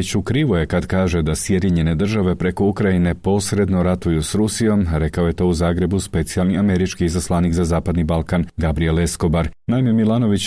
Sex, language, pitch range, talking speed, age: male, Croatian, 85-100 Hz, 170 wpm, 40-59